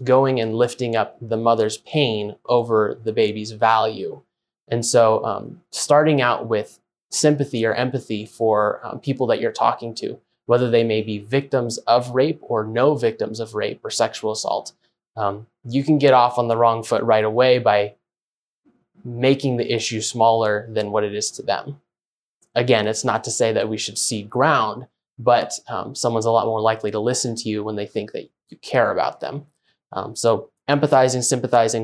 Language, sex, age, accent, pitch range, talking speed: English, male, 20-39, American, 110-135 Hz, 185 wpm